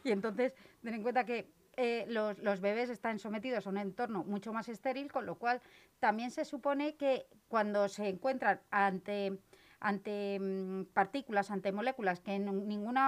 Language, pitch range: Spanish, 205-260 Hz